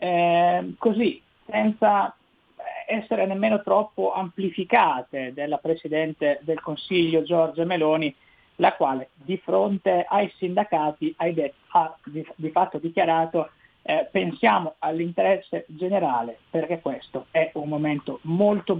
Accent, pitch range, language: native, 155-195 Hz, Italian